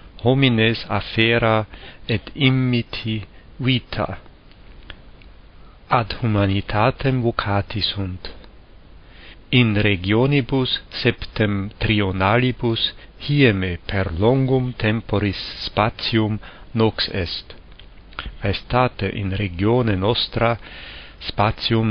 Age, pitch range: 50-69, 95-120 Hz